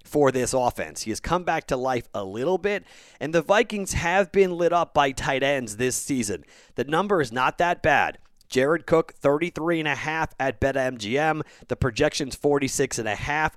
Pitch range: 115-140 Hz